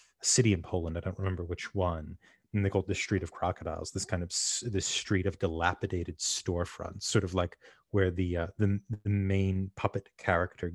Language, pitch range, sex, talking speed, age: English, 90-105 Hz, male, 195 wpm, 30-49